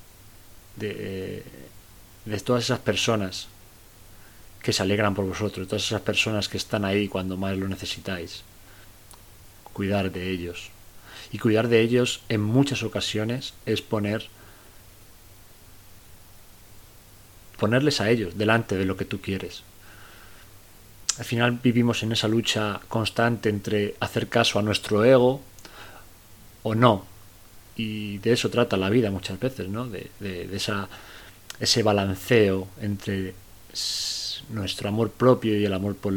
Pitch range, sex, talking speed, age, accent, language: 95-110 Hz, male, 135 wpm, 40-59, Spanish, Spanish